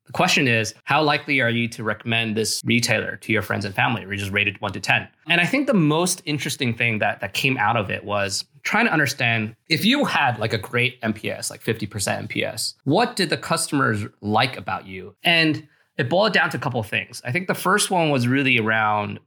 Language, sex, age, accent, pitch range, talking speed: English, male, 20-39, American, 105-130 Hz, 225 wpm